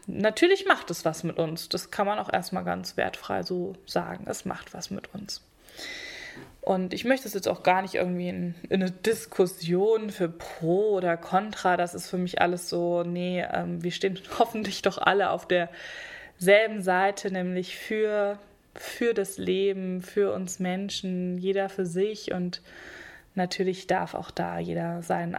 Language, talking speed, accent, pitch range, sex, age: German, 170 wpm, German, 180-210 Hz, female, 20-39